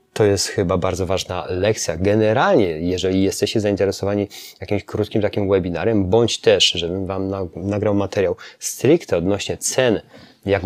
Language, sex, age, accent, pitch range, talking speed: Polish, male, 20-39, native, 100-115 Hz, 135 wpm